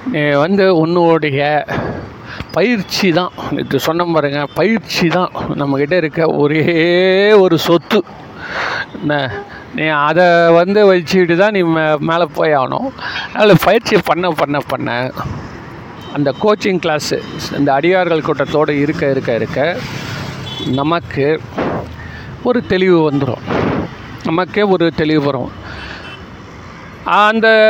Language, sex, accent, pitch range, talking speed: Tamil, male, native, 155-200 Hz, 100 wpm